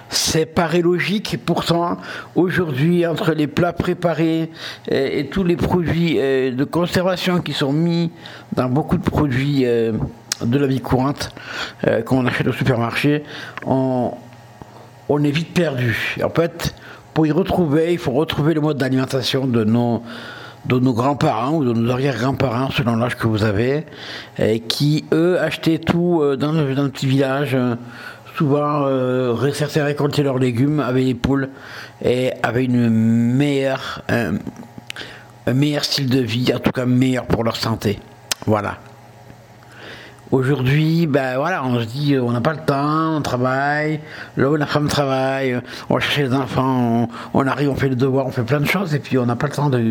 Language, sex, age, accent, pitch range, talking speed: French, male, 60-79, French, 125-155 Hz, 170 wpm